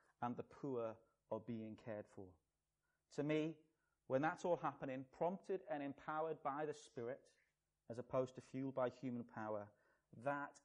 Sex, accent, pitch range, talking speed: male, British, 115-145 Hz, 150 wpm